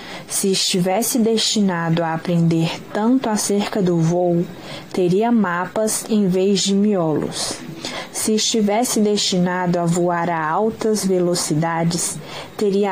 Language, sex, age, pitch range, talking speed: Portuguese, female, 20-39, 175-215 Hz, 110 wpm